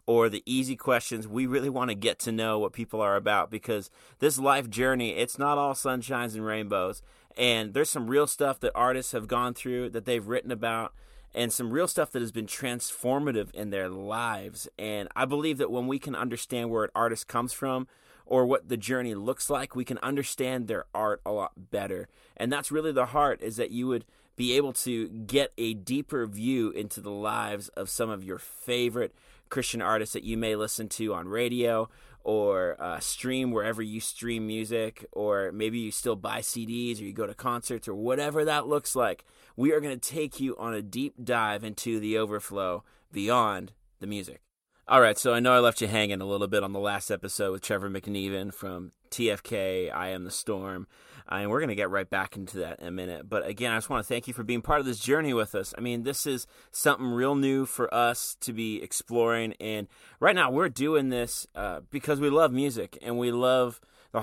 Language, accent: English, American